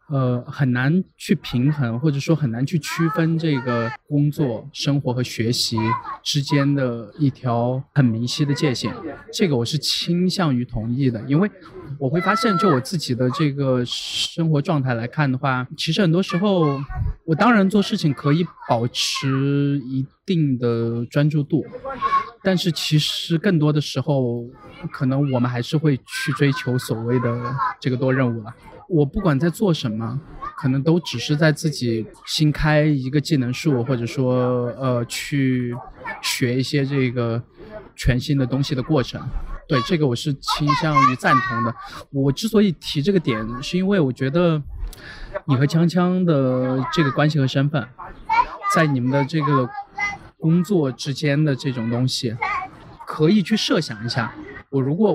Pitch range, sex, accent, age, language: 125-165 Hz, male, native, 20-39, Chinese